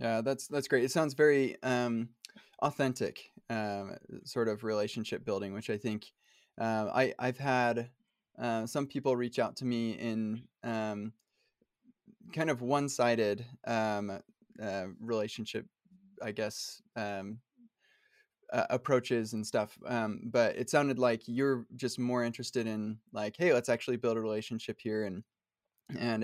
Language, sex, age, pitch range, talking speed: English, male, 20-39, 115-135 Hz, 145 wpm